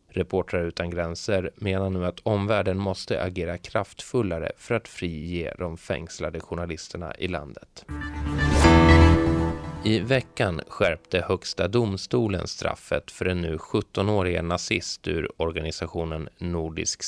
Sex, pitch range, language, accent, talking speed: male, 85-95 Hz, Swedish, native, 110 wpm